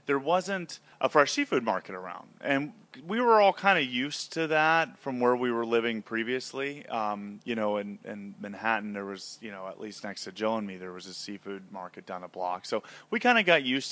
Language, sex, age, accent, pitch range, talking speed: English, male, 30-49, American, 110-145 Hz, 230 wpm